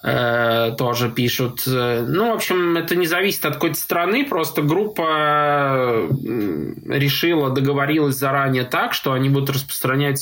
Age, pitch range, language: 20-39, 135-160 Hz, Russian